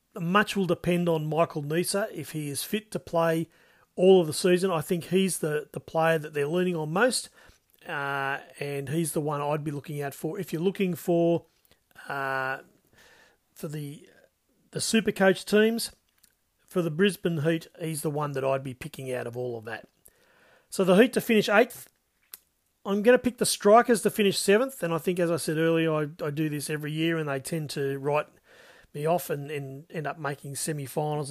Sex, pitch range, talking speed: male, 155-195 Hz, 200 wpm